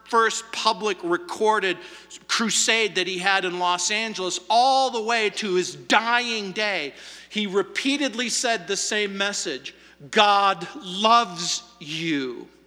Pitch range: 185-235 Hz